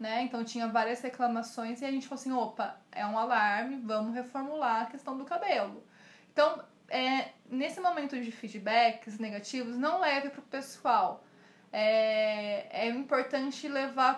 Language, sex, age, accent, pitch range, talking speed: Portuguese, female, 20-39, Brazilian, 230-285 Hz, 150 wpm